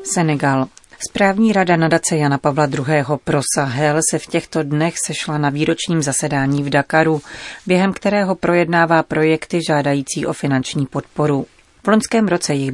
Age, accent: 40-59, native